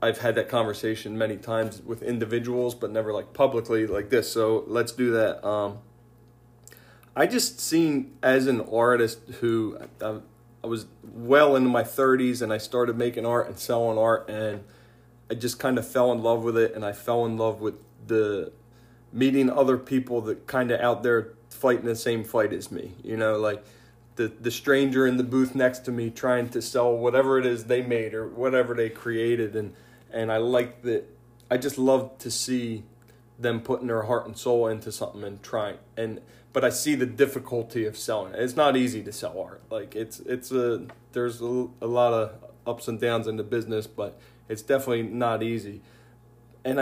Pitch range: 115-125 Hz